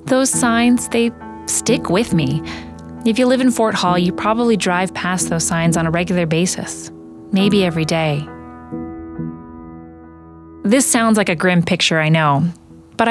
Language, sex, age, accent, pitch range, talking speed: English, female, 30-49, American, 165-220 Hz, 155 wpm